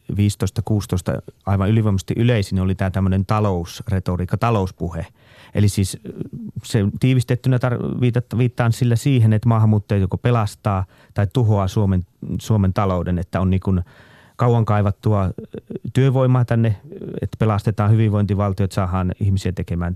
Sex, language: male, Finnish